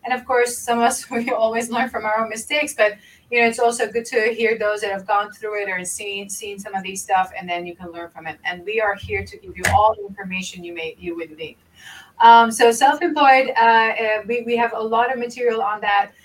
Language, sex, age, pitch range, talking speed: English, female, 30-49, 195-235 Hz, 255 wpm